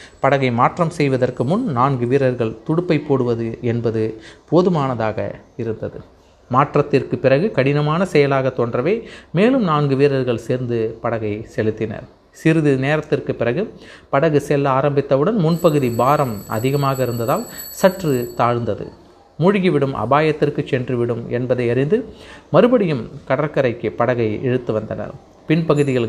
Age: 30-49